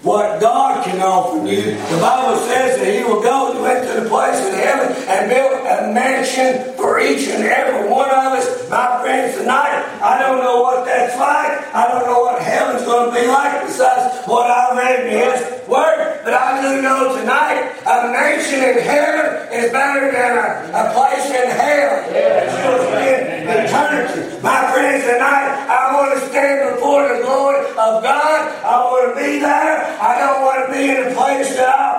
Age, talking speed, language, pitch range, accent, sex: 40-59, 190 wpm, English, 245-280 Hz, American, male